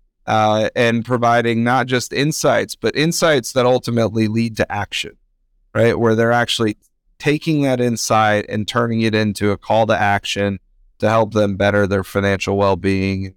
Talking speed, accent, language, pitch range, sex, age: 155 wpm, American, English, 100-120 Hz, male, 30-49